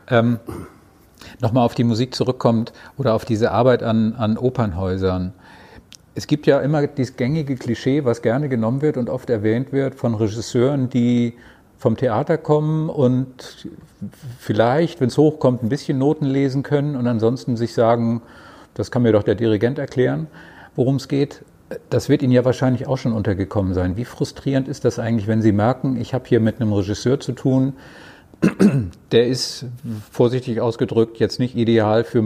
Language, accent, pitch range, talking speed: German, German, 110-135 Hz, 170 wpm